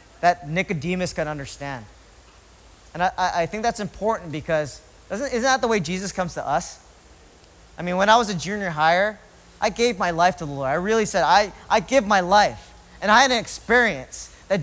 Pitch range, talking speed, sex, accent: 180-255 Hz, 200 wpm, male, American